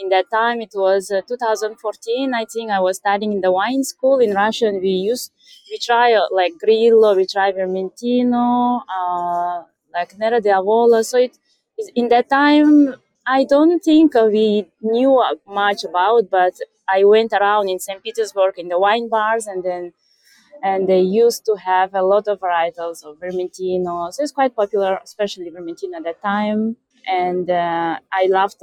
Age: 20-39